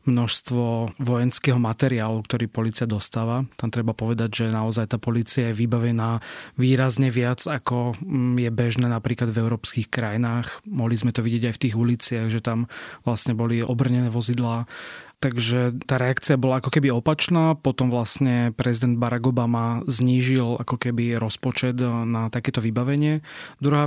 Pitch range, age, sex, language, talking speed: 115-130 Hz, 30-49, male, Slovak, 145 wpm